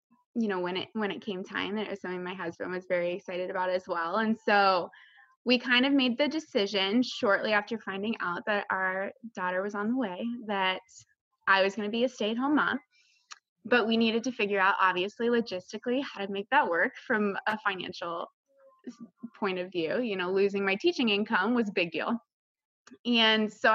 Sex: female